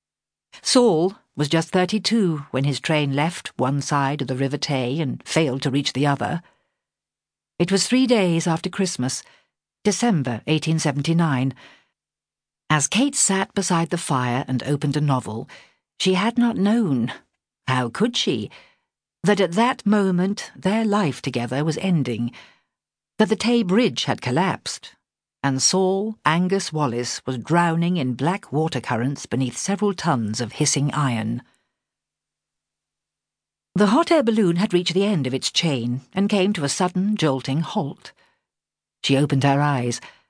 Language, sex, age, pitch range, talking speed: English, female, 60-79, 135-195 Hz, 145 wpm